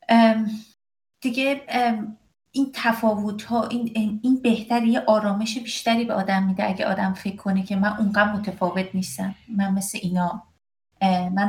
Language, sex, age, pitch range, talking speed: Persian, female, 30-49, 185-220 Hz, 140 wpm